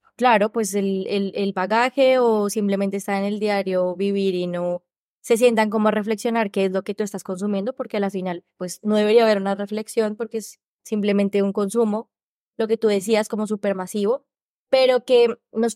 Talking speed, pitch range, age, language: 195 wpm, 195-230 Hz, 20-39, Spanish